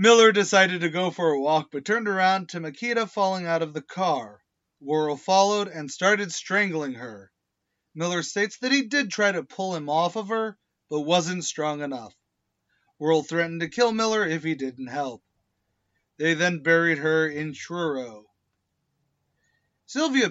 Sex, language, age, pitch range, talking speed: male, English, 30-49, 155-220 Hz, 165 wpm